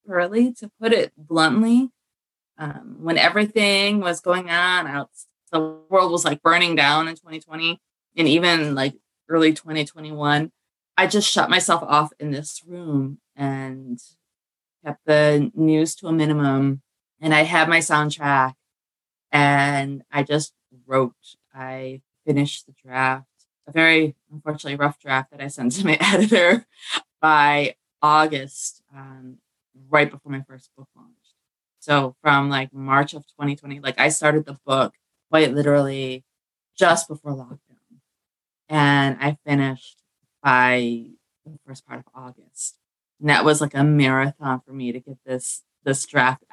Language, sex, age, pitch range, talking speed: English, female, 20-39, 135-165 Hz, 145 wpm